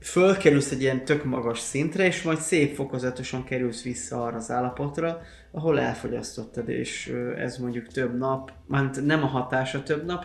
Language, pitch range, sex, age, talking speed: Hungarian, 120-145 Hz, male, 20-39, 165 wpm